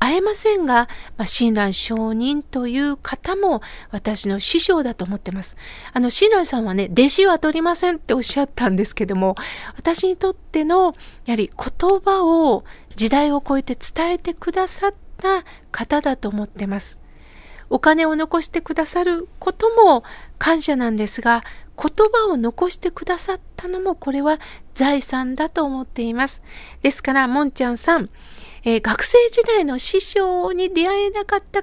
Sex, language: female, Japanese